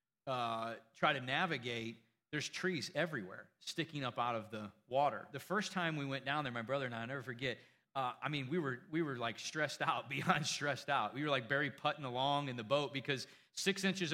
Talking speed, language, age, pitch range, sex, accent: 220 wpm, English, 40-59, 125-155 Hz, male, American